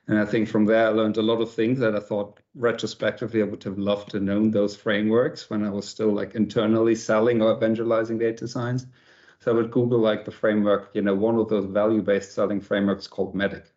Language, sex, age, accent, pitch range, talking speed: English, male, 50-69, German, 105-115 Hz, 230 wpm